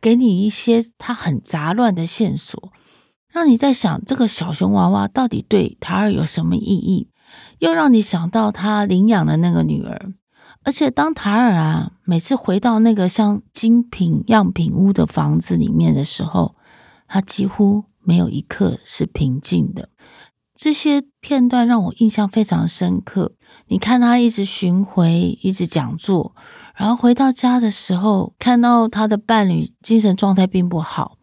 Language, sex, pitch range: Chinese, female, 180-235 Hz